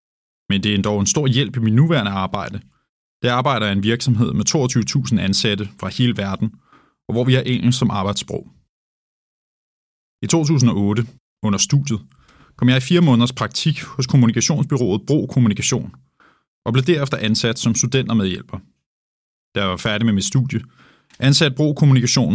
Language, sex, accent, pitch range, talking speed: Danish, male, native, 105-135 Hz, 160 wpm